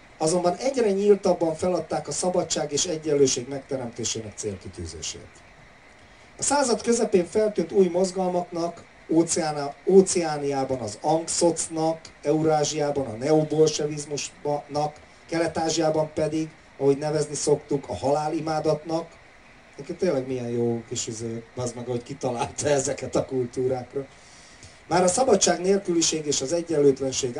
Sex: male